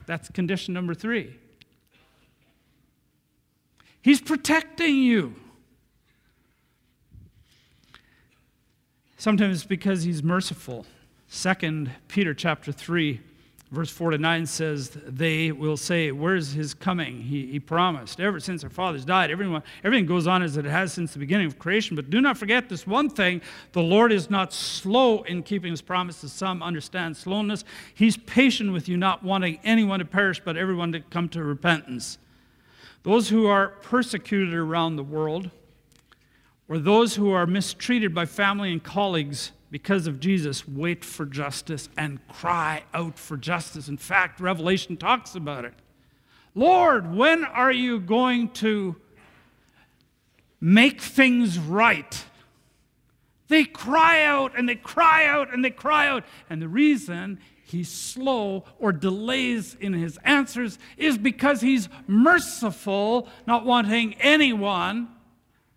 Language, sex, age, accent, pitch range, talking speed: English, male, 50-69, American, 160-230 Hz, 135 wpm